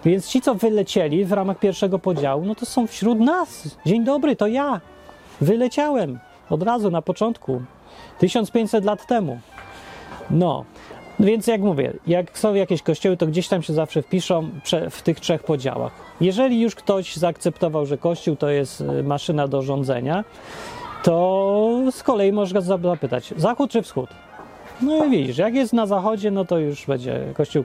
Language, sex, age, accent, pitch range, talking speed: Polish, male, 30-49, native, 145-210 Hz, 160 wpm